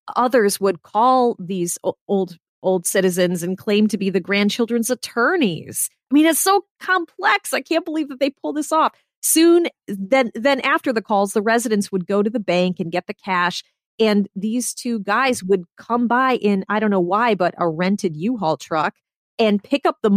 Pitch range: 175-250 Hz